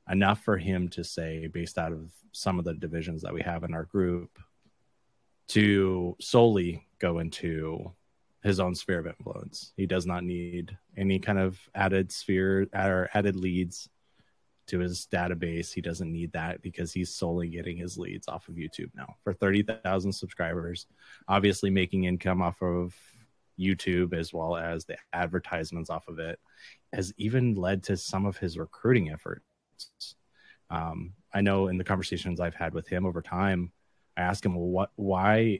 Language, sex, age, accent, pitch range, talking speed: English, male, 20-39, American, 85-100 Hz, 170 wpm